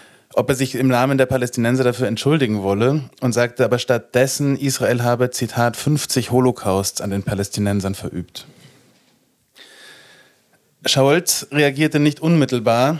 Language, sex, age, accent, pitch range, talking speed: German, male, 20-39, German, 115-135 Hz, 125 wpm